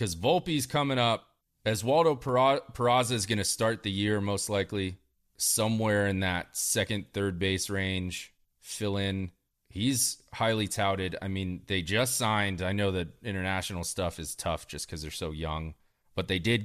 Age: 30-49